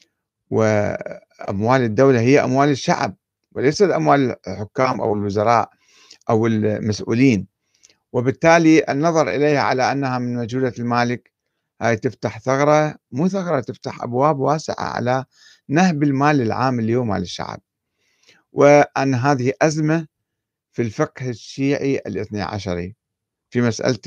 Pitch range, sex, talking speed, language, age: 115-150 Hz, male, 110 wpm, Arabic, 50-69